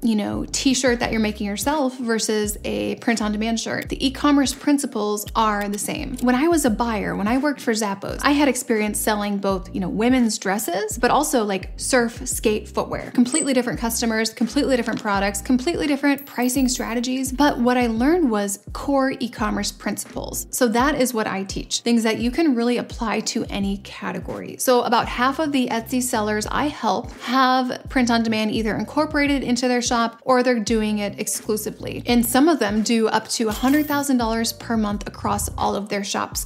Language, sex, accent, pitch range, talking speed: English, female, American, 220-265 Hz, 195 wpm